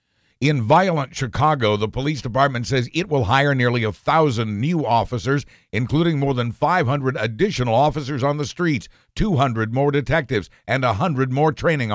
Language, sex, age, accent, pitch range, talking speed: English, male, 60-79, American, 110-150 Hz, 155 wpm